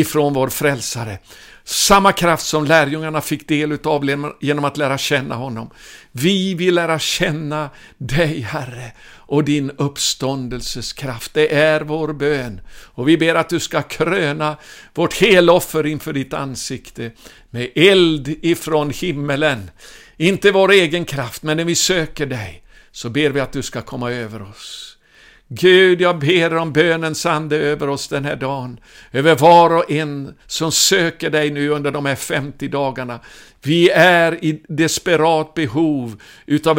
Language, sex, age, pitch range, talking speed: Swedish, male, 60-79, 125-155 Hz, 150 wpm